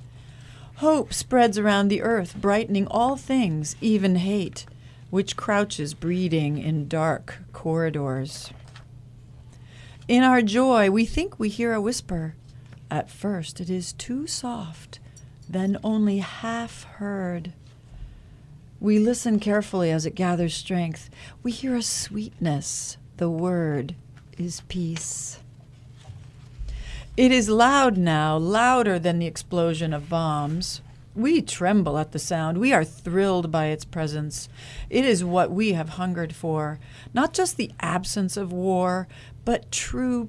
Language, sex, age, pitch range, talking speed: English, female, 50-69, 130-205 Hz, 130 wpm